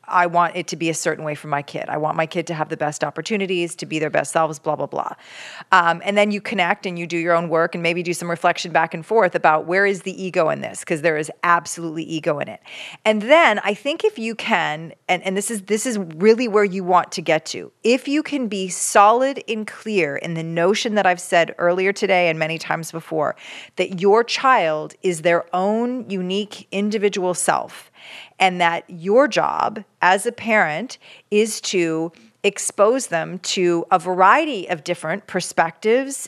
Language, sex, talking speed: English, female, 205 wpm